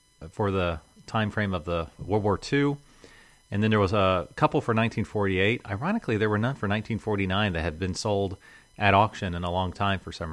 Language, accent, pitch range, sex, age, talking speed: English, American, 95-110 Hz, male, 40-59, 205 wpm